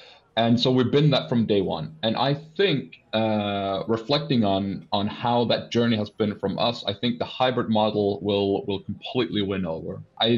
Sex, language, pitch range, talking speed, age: male, English, 95-110 Hz, 190 wpm, 30-49